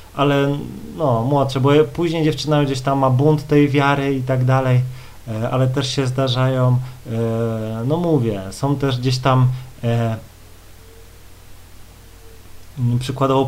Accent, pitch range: native, 115-135 Hz